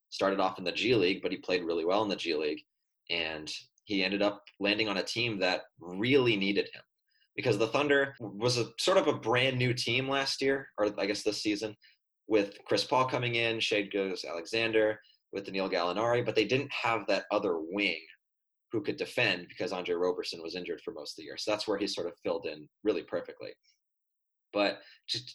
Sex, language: male, English